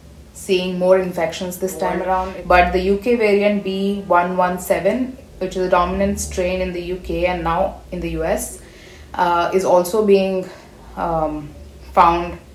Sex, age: female, 30-49